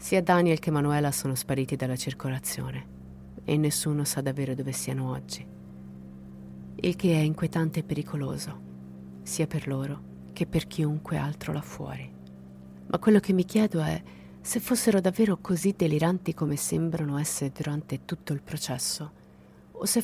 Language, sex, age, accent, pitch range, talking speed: Italian, female, 30-49, native, 130-170 Hz, 150 wpm